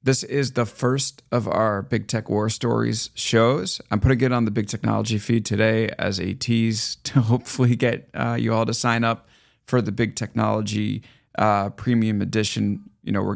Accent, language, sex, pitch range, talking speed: American, English, male, 105-125 Hz, 190 wpm